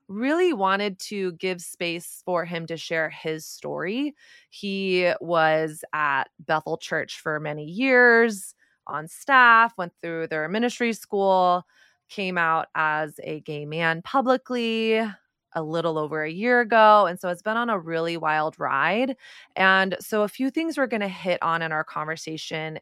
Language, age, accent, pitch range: English, 20-39, American, 160-210 Hz